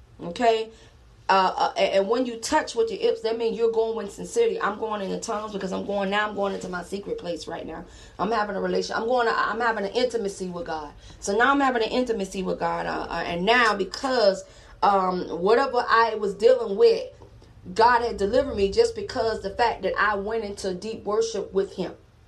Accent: American